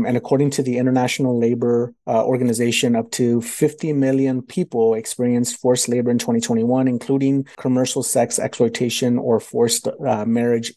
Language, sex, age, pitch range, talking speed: English, male, 30-49, 115-135 Hz, 145 wpm